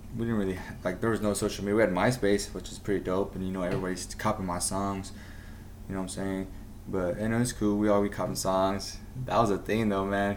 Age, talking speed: 20-39, 255 wpm